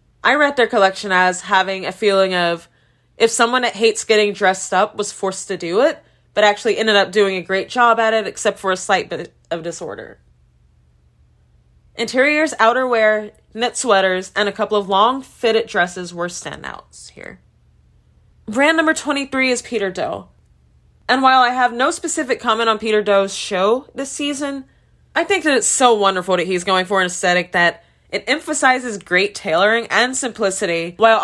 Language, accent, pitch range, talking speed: English, American, 185-240 Hz, 175 wpm